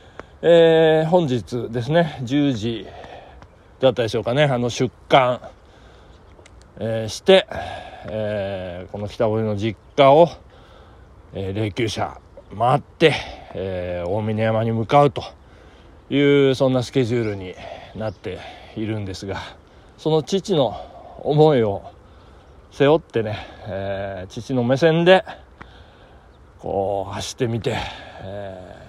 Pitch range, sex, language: 100-145 Hz, male, Japanese